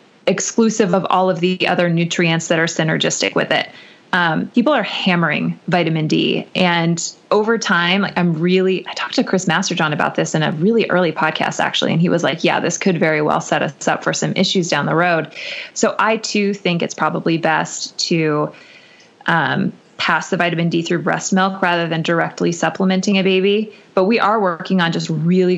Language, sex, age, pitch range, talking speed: English, female, 20-39, 165-195 Hz, 195 wpm